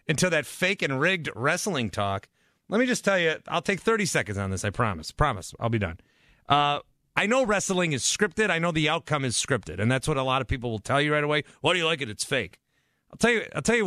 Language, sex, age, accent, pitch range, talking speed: English, male, 30-49, American, 130-180 Hz, 270 wpm